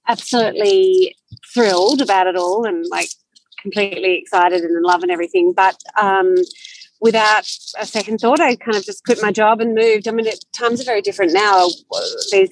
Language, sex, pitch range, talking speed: English, female, 185-275 Hz, 175 wpm